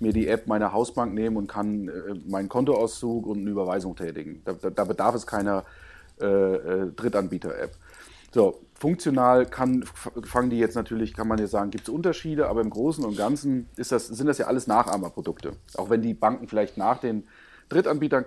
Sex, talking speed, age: male, 185 wpm, 40-59